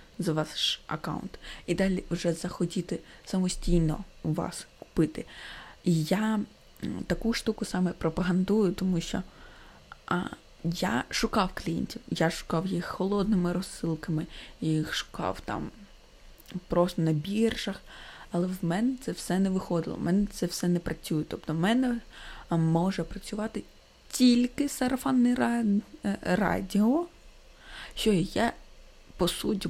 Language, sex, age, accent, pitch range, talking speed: Ukrainian, female, 20-39, native, 175-210 Hz, 120 wpm